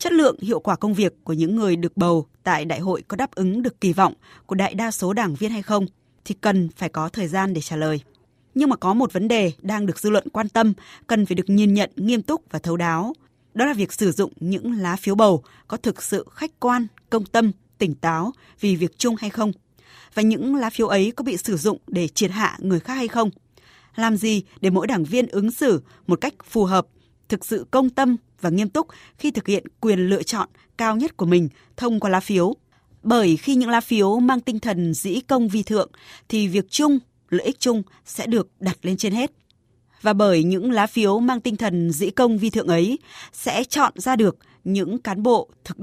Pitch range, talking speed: 180-235 Hz, 230 wpm